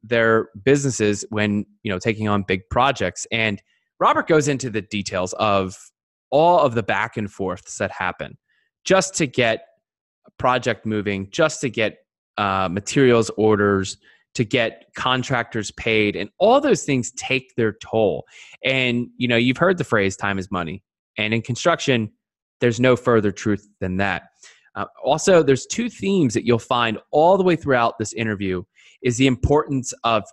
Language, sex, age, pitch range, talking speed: English, male, 20-39, 105-135 Hz, 165 wpm